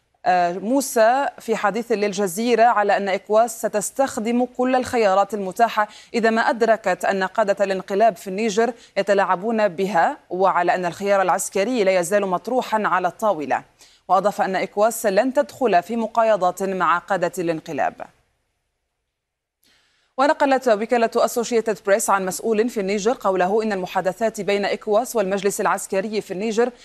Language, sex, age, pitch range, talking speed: Arabic, female, 30-49, 190-230 Hz, 125 wpm